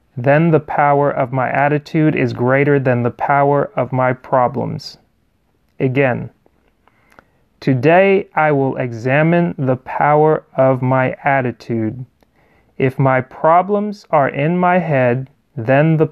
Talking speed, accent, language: 125 wpm, American, English